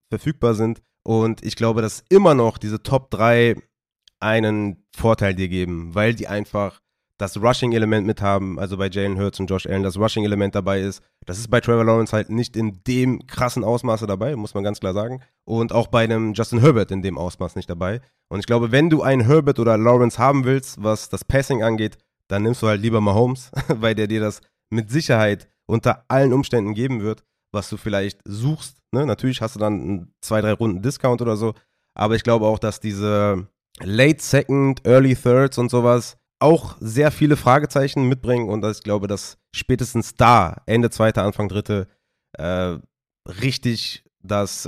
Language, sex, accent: German, male, German